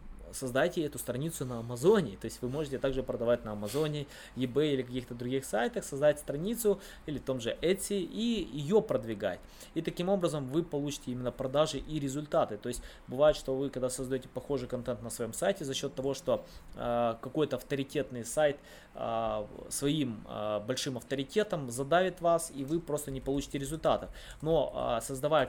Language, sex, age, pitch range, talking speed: Russian, male, 20-39, 125-155 Hz, 170 wpm